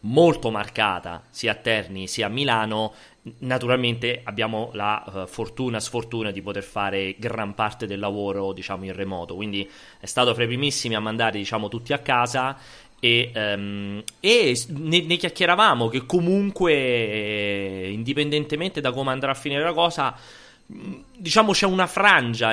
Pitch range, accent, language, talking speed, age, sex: 105-130 Hz, native, Italian, 150 wpm, 30-49, male